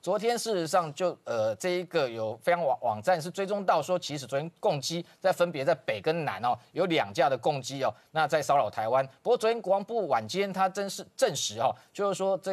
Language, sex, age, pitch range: Chinese, male, 30-49, 145-190 Hz